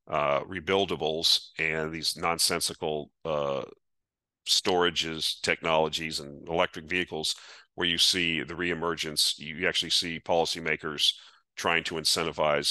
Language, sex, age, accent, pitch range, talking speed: English, male, 40-59, American, 80-90 Hz, 110 wpm